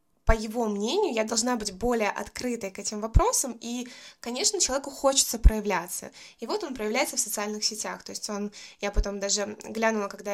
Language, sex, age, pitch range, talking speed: Russian, female, 20-39, 205-240 Hz, 180 wpm